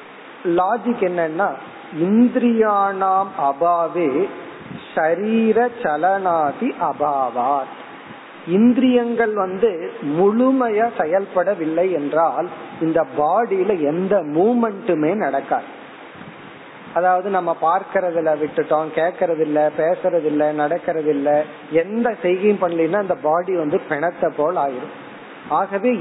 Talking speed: 75 wpm